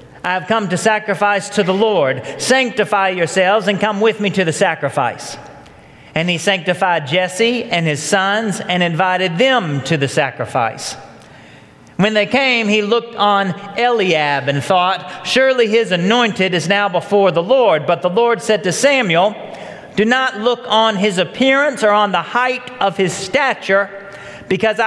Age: 40-59